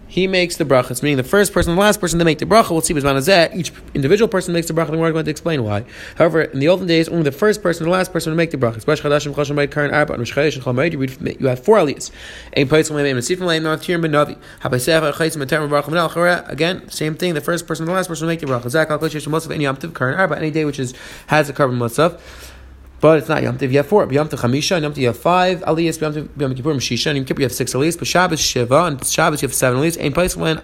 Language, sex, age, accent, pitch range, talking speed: English, male, 30-49, American, 135-170 Hz, 190 wpm